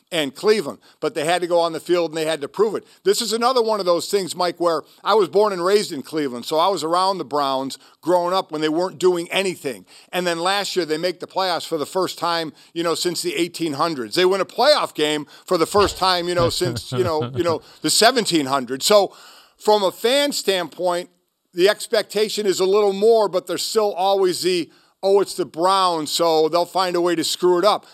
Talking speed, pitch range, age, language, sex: 235 wpm, 165-210 Hz, 50-69, English, male